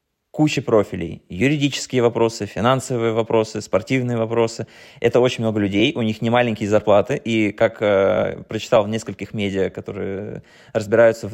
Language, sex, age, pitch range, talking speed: Russian, male, 20-39, 105-130 Hz, 145 wpm